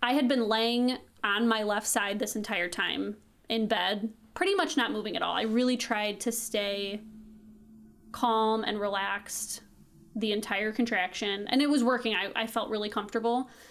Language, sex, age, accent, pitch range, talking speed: English, female, 20-39, American, 215-250 Hz, 170 wpm